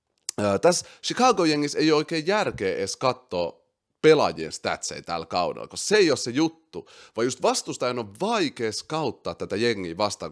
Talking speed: 155 wpm